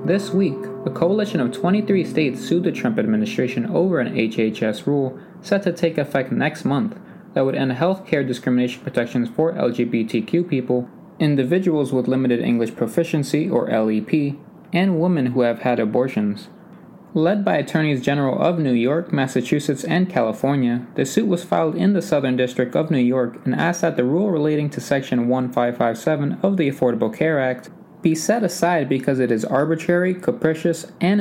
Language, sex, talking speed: English, male, 170 wpm